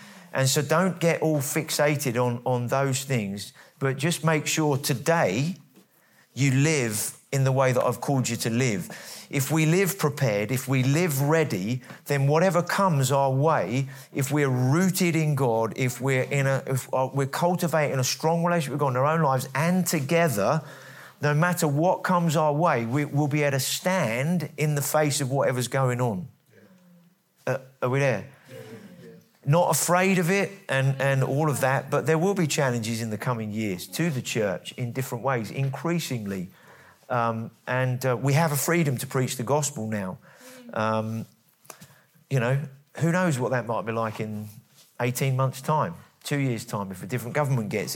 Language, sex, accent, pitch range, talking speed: English, male, British, 125-160 Hz, 180 wpm